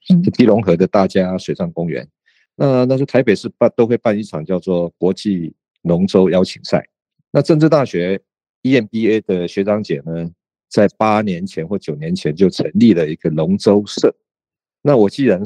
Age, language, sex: 50-69, Chinese, male